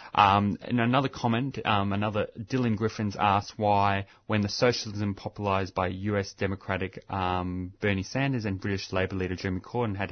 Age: 20-39